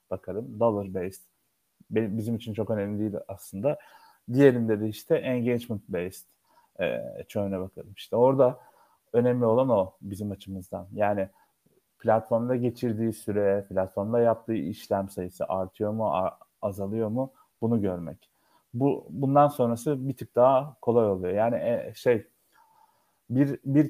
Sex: male